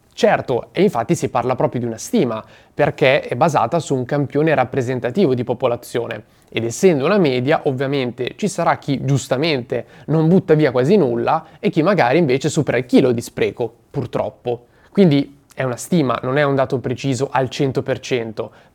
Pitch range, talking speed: 120-160 Hz, 170 wpm